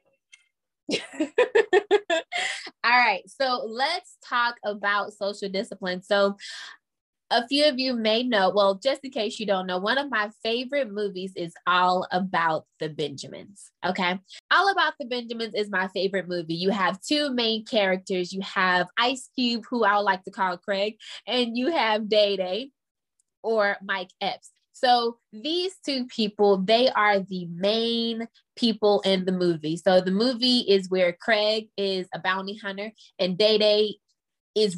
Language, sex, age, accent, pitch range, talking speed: English, female, 20-39, American, 185-235 Hz, 155 wpm